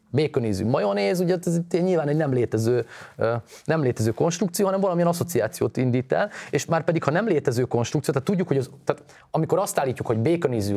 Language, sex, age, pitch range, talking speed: Hungarian, male, 30-49, 125-170 Hz, 190 wpm